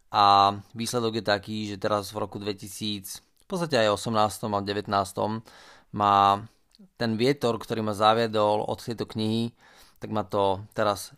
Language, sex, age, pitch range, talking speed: Slovak, male, 20-39, 100-115 Hz, 145 wpm